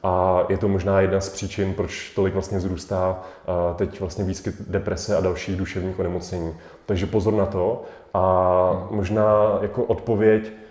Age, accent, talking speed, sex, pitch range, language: 30-49, native, 150 wpm, male, 95-105 Hz, Czech